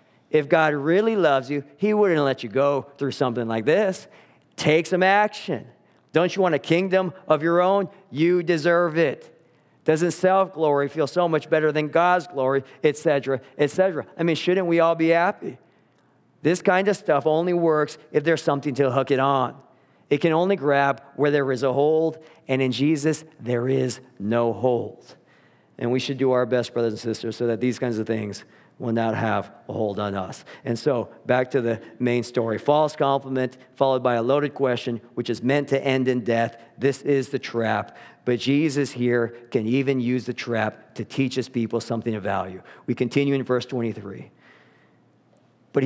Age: 40-59